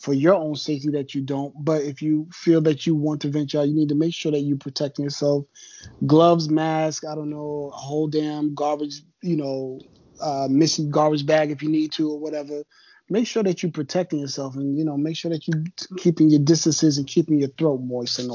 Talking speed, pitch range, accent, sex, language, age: 225 wpm, 140-165 Hz, American, male, English, 30-49